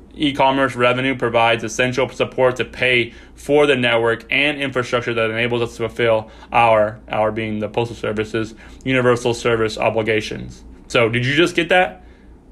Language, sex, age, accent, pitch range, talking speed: English, male, 20-39, American, 115-135 Hz, 155 wpm